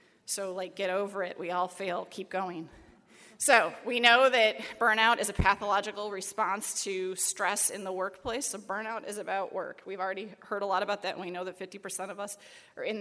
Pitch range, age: 185-225 Hz, 30-49